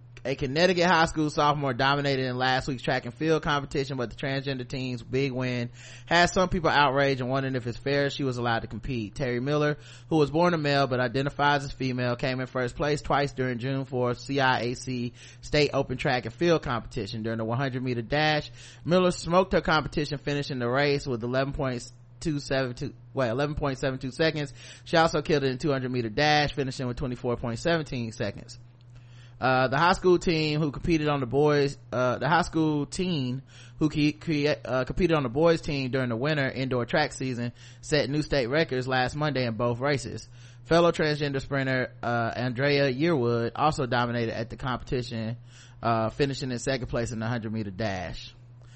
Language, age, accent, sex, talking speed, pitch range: English, 30-49, American, male, 180 wpm, 120-150 Hz